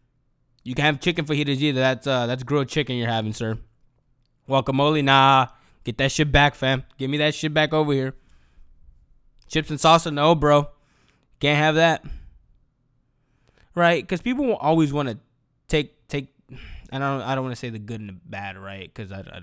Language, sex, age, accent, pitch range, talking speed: English, male, 20-39, American, 120-155 Hz, 190 wpm